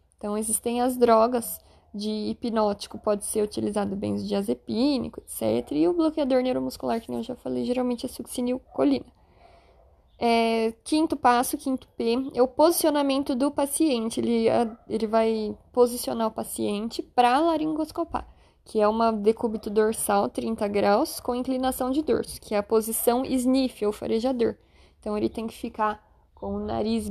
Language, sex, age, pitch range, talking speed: Portuguese, female, 20-39, 220-270 Hz, 155 wpm